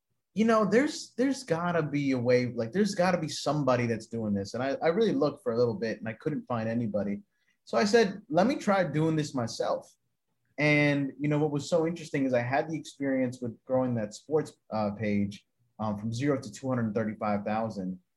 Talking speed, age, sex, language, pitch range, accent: 205 wpm, 20-39, male, English, 115-155 Hz, American